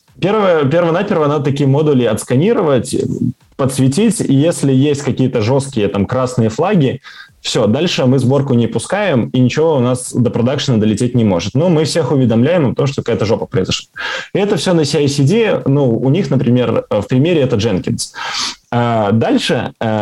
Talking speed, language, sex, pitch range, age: 165 wpm, Russian, male, 110-140 Hz, 20-39